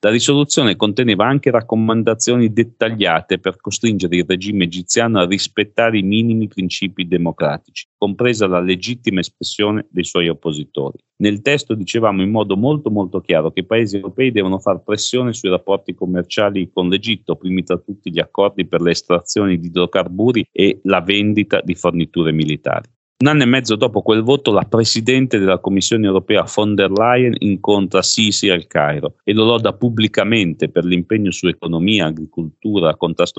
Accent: native